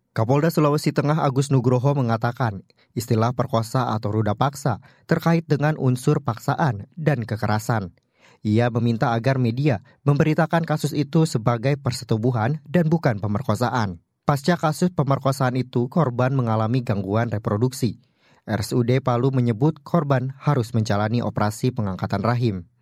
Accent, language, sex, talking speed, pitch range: native, Indonesian, male, 120 wpm, 115-145 Hz